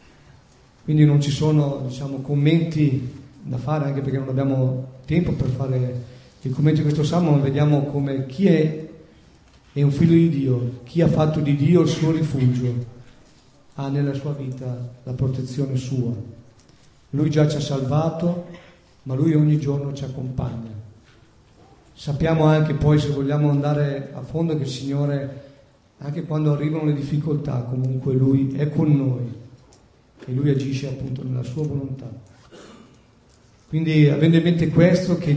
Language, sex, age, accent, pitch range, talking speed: Italian, male, 40-59, native, 130-155 Hz, 155 wpm